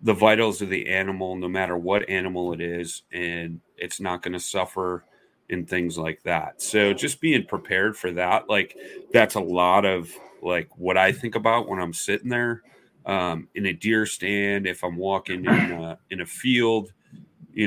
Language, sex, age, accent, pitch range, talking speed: English, male, 30-49, American, 90-100 Hz, 185 wpm